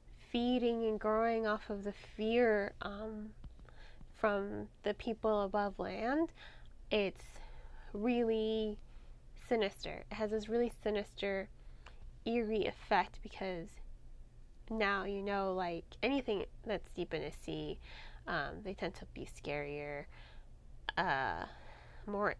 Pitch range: 180-220 Hz